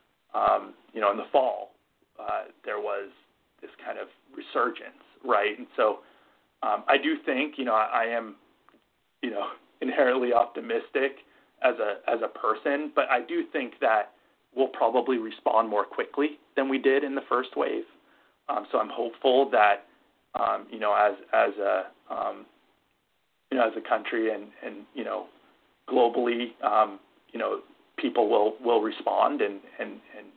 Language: English